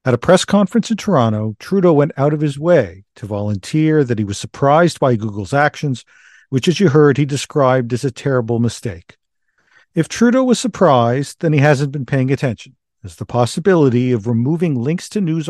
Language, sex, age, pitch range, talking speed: English, male, 50-69, 120-160 Hz, 190 wpm